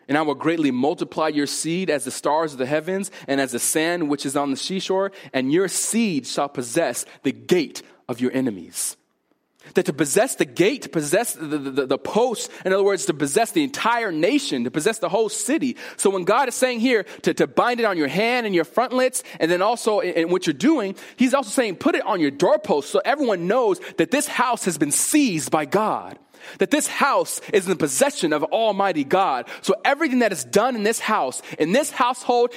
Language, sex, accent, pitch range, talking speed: English, male, American, 145-240 Hz, 220 wpm